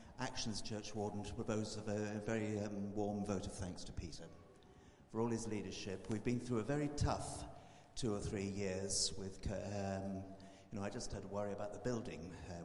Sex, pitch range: male, 95-120 Hz